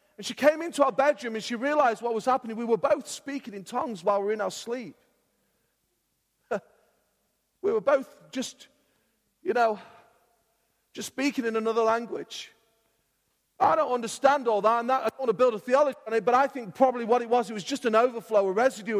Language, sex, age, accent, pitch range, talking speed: English, male, 40-59, British, 215-260 Hz, 200 wpm